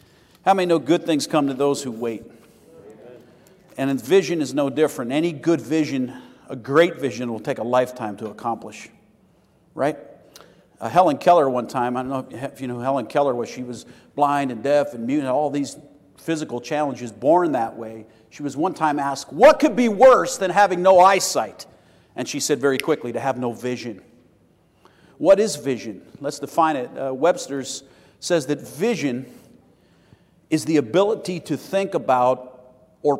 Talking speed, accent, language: 175 wpm, American, English